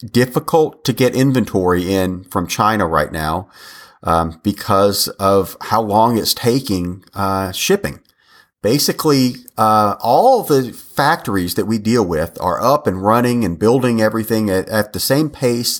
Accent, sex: American, male